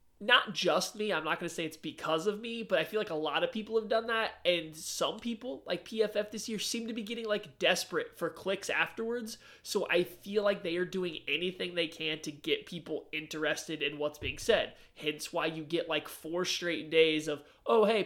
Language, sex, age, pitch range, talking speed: English, male, 20-39, 150-185 Hz, 225 wpm